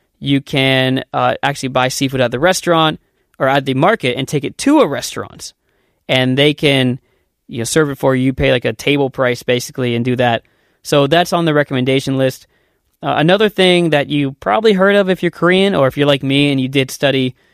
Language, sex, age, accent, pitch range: Korean, male, 20-39, American, 130-170 Hz